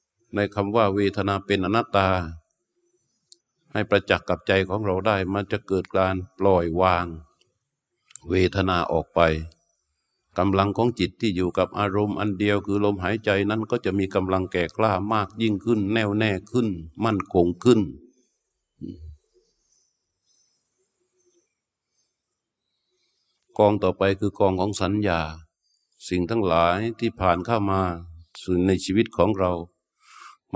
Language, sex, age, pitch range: Thai, male, 60-79, 90-110 Hz